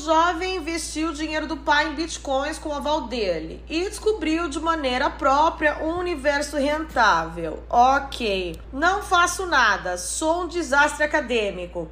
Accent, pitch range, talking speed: Brazilian, 265-335 Hz, 145 wpm